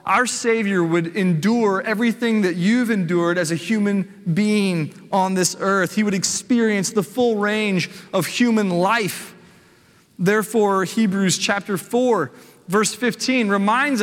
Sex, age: male, 30-49